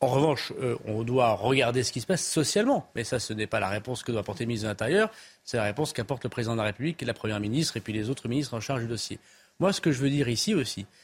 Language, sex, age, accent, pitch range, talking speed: French, male, 40-59, French, 125-165 Hz, 295 wpm